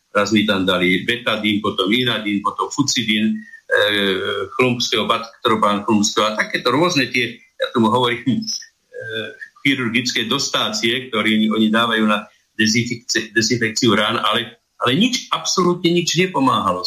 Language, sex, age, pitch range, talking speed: Slovak, male, 50-69, 110-155 Hz, 130 wpm